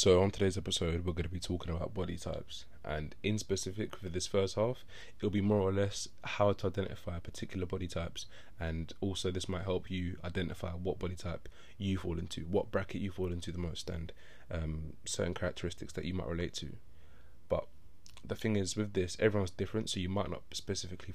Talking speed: 205 wpm